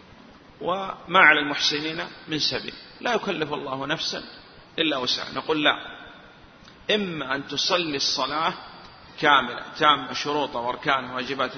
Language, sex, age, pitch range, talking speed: Arabic, male, 40-59, 155-200 Hz, 115 wpm